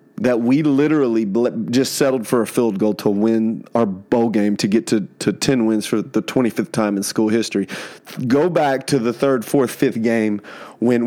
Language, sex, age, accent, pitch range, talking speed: English, male, 30-49, American, 110-130 Hz, 200 wpm